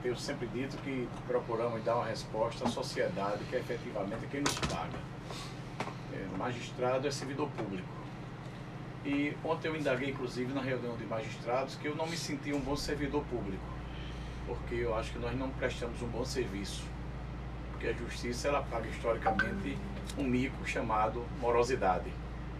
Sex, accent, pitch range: male, Brazilian, 125-150 Hz